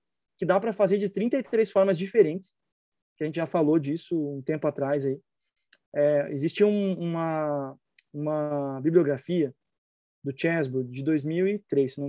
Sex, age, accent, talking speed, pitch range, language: male, 20-39, Brazilian, 150 wpm, 155-205 Hz, Portuguese